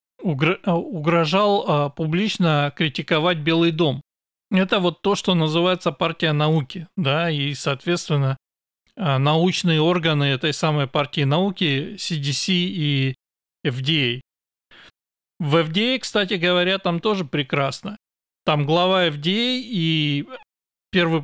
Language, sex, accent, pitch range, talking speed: Russian, male, native, 145-185 Hz, 100 wpm